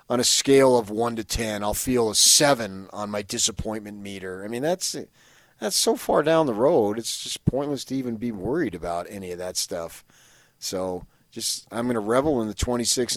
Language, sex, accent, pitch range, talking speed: English, male, American, 100-130 Hz, 205 wpm